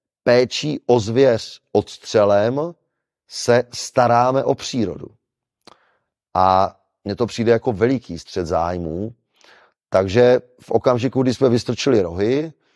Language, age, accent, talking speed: Czech, 30-49, native, 110 wpm